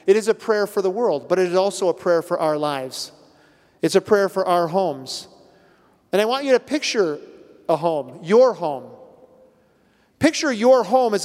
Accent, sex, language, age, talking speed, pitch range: American, male, English, 40-59, 190 wpm, 170-220 Hz